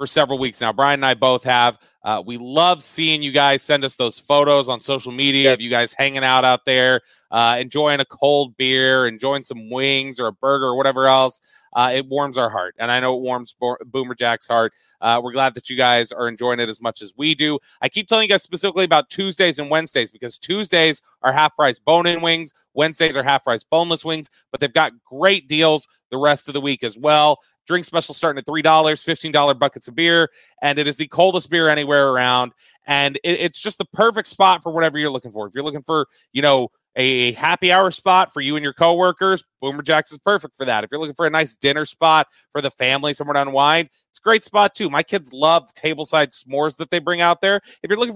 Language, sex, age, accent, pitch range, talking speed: English, male, 30-49, American, 130-165 Hz, 235 wpm